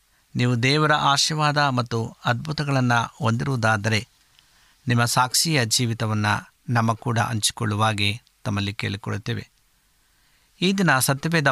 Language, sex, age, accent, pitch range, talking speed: Kannada, male, 60-79, native, 115-145 Hz, 90 wpm